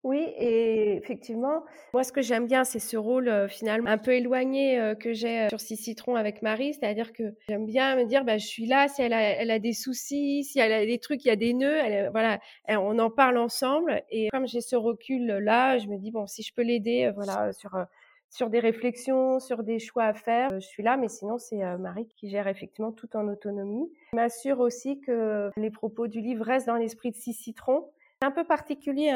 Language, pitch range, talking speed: French, 220-260 Hz, 240 wpm